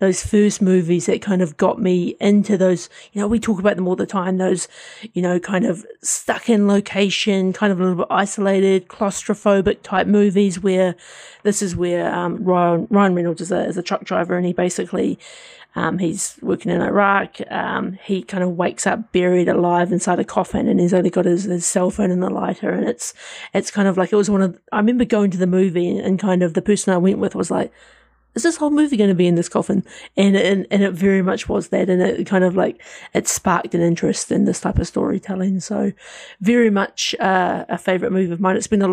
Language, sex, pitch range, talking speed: English, female, 185-210 Hz, 230 wpm